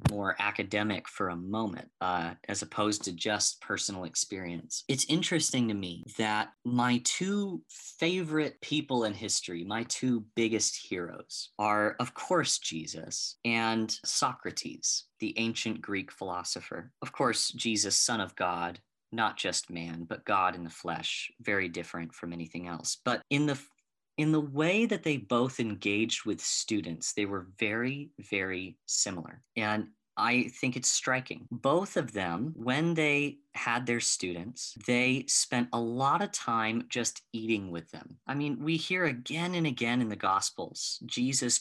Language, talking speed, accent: English, 155 wpm, American